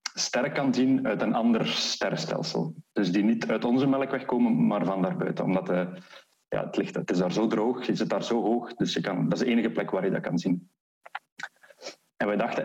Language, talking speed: Dutch, 230 wpm